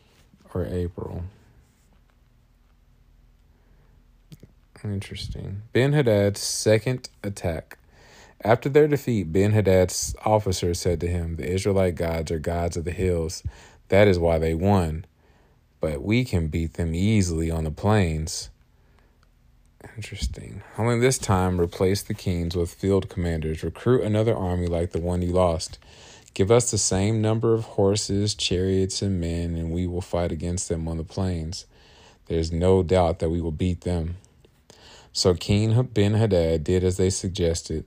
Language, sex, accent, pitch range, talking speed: English, male, American, 85-105 Hz, 145 wpm